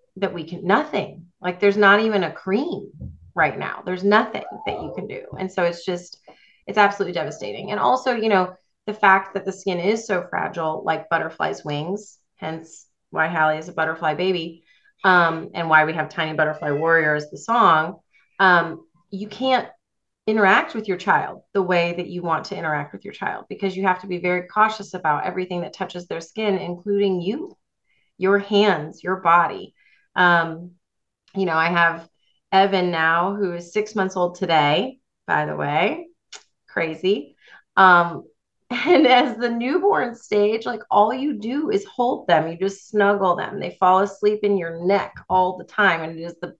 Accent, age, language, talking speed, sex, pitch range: American, 30-49, English, 180 wpm, female, 170-205 Hz